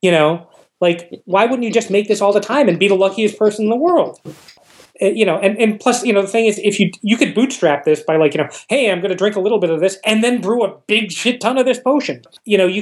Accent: American